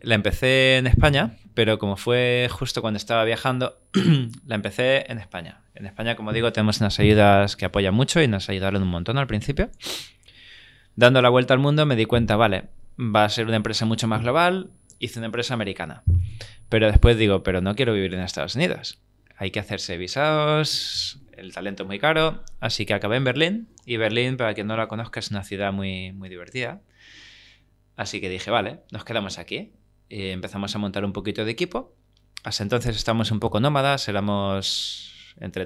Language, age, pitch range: Spanish, 20-39, 100-125 Hz